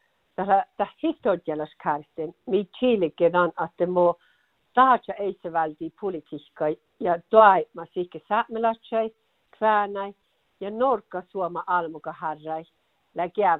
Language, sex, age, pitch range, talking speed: Finnish, female, 60-79, 170-220 Hz, 95 wpm